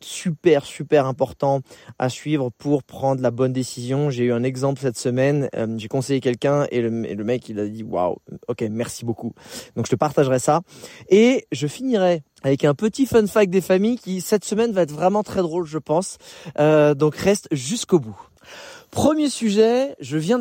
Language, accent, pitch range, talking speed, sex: French, French, 130-170 Hz, 195 wpm, male